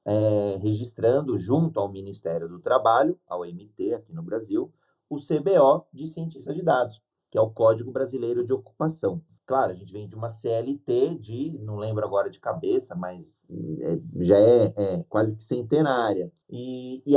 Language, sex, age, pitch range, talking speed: Portuguese, male, 30-49, 105-145 Hz, 160 wpm